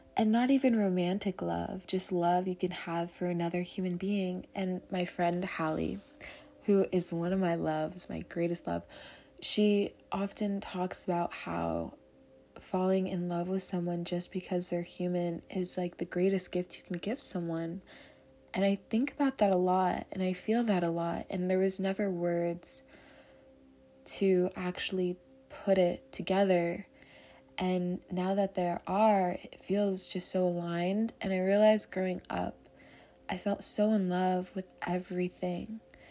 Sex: female